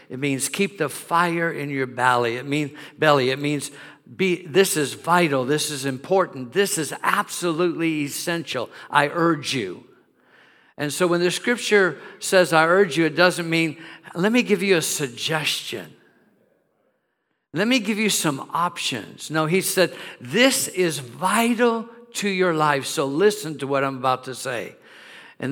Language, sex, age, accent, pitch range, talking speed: English, male, 50-69, American, 145-180 Hz, 160 wpm